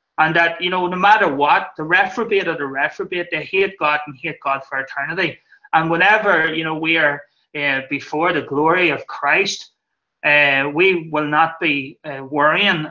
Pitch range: 150-185 Hz